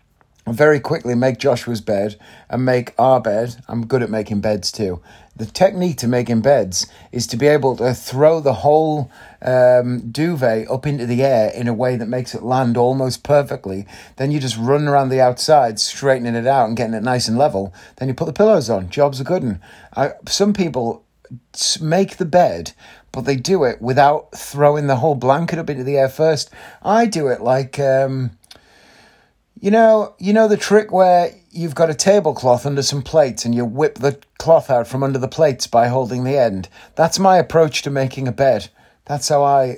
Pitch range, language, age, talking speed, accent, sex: 120-155 Hz, English, 30-49, 200 wpm, British, male